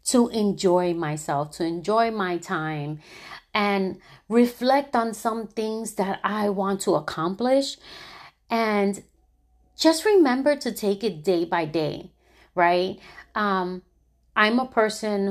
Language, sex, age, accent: English, female, 30-49, American